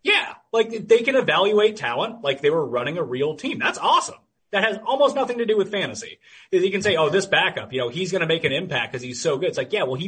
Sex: male